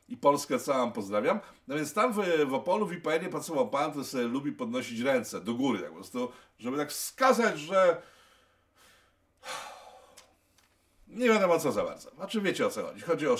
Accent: native